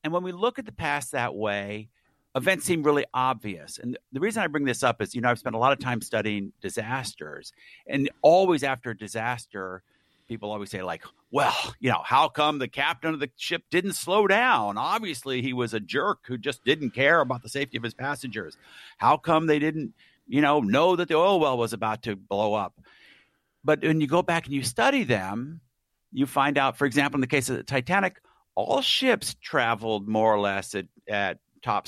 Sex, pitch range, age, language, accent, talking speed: male, 115-150 Hz, 50-69, English, American, 215 wpm